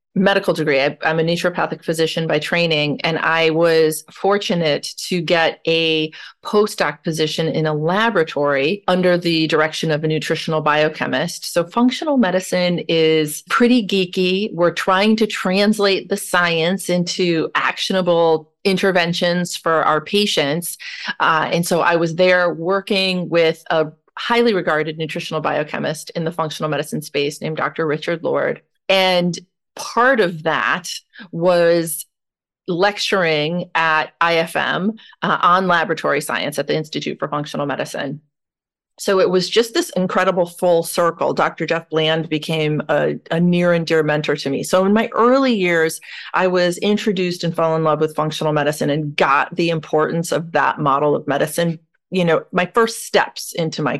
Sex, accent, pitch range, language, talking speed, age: female, American, 155-185 Hz, English, 150 wpm, 30-49